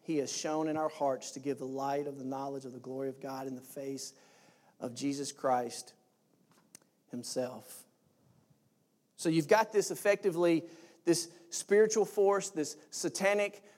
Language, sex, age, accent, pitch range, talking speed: English, male, 40-59, American, 155-200 Hz, 150 wpm